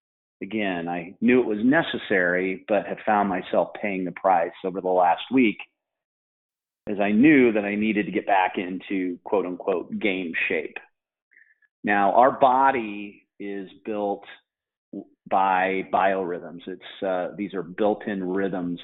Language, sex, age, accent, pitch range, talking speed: English, male, 40-59, American, 95-110 Hz, 140 wpm